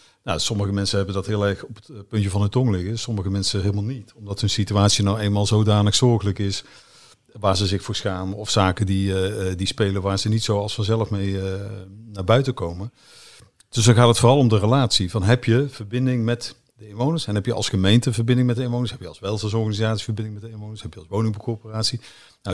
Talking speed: 225 wpm